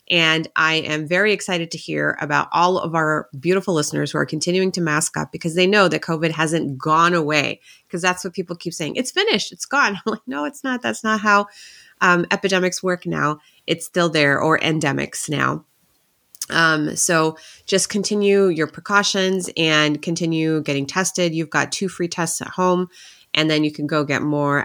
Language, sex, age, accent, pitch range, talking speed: English, female, 30-49, American, 145-180 Hz, 190 wpm